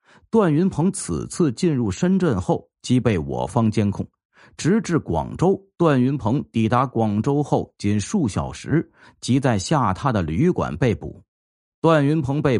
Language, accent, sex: Chinese, native, male